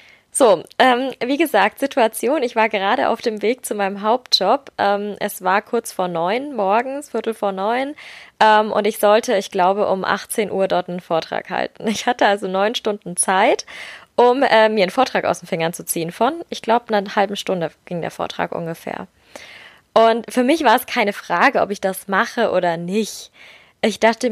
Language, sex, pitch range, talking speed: German, female, 195-235 Hz, 195 wpm